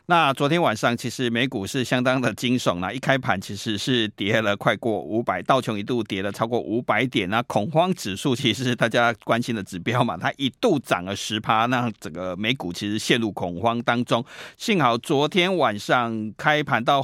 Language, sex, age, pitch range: Chinese, male, 50-69, 110-145 Hz